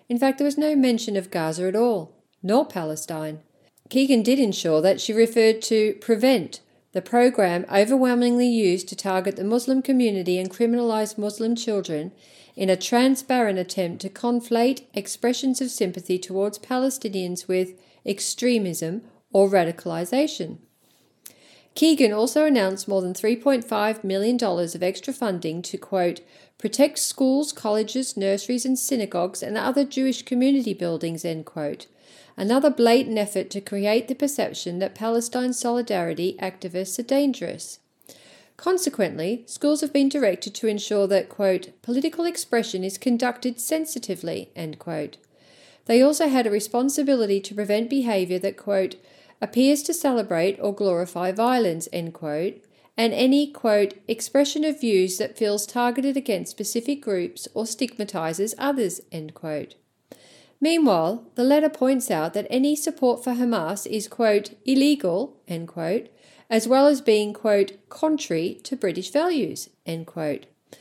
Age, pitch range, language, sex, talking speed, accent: 40-59, 190-255 Hz, English, female, 140 wpm, Australian